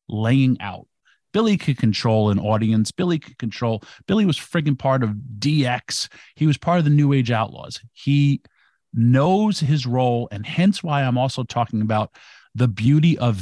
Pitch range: 115-145 Hz